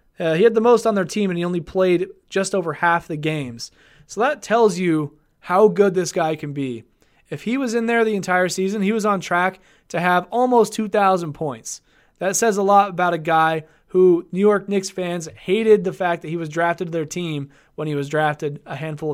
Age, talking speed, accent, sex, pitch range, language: 20-39, 225 wpm, American, male, 160-210 Hz, English